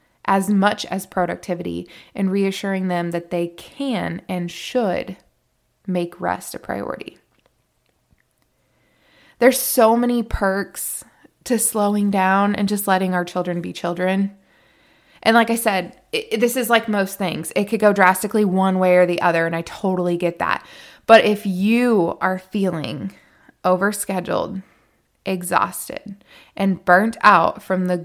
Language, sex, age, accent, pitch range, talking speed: English, female, 20-39, American, 180-210 Hz, 140 wpm